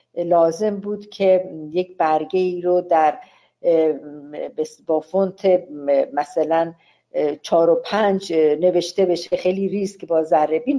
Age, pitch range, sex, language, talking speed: 50-69, 160-195 Hz, female, Persian, 110 wpm